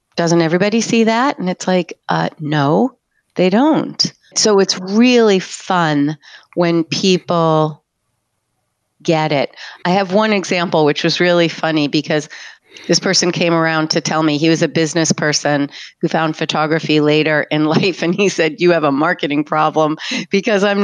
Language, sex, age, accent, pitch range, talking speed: English, female, 30-49, American, 155-190 Hz, 160 wpm